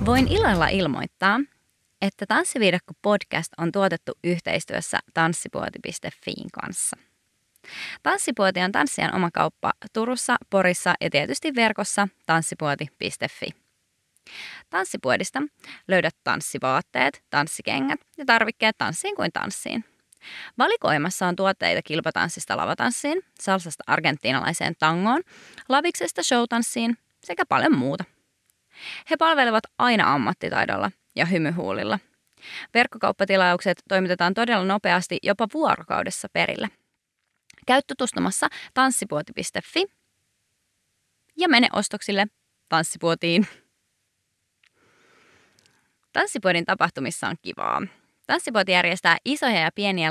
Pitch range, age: 170-245 Hz, 20-39